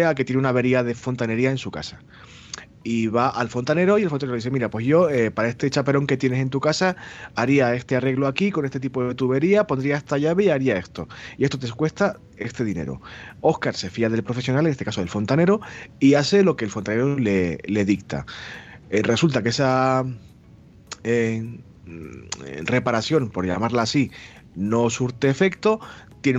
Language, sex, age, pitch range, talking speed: Spanish, male, 30-49, 110-145 Hz, 190 wpm